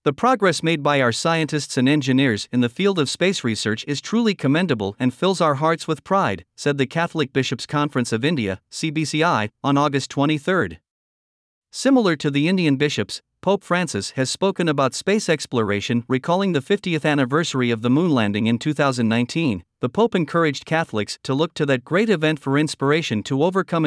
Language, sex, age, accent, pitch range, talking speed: English, male, 50-69, American, 130-165 Hz, 175 wpm